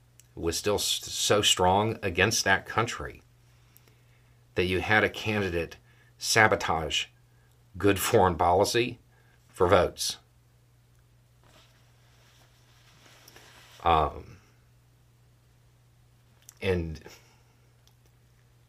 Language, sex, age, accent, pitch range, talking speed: English, male, 50-69, American, 90-120 Hz, 65 wpm